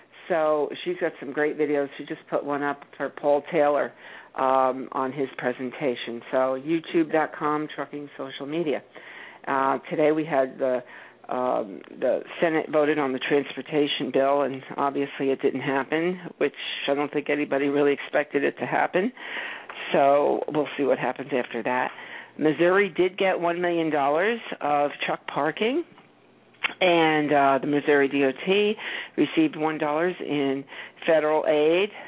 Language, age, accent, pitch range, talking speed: English, 50-69, American, 140-165 Hz, 140 wpm